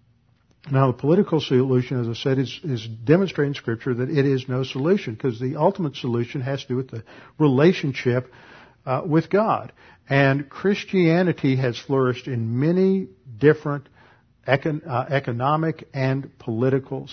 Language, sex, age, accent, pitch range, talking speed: English, male, 50-69, American, 120-140 Hz, 140 wpm